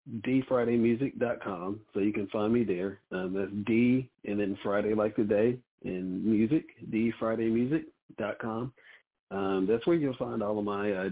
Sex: male